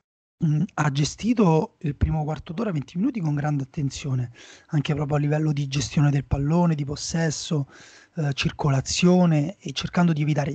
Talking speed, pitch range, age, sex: 155 wpm, 145-165 Hz, 30-49, male